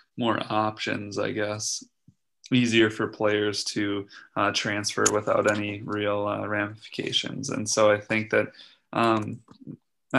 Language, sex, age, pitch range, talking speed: English, male, 20-39, 105-110 Hz, 130 wpm